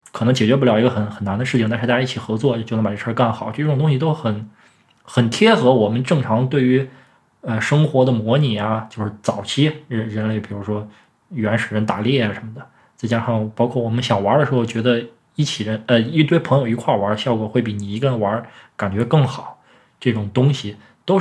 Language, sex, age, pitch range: Chinese, male, 20-39, 110-140 Hz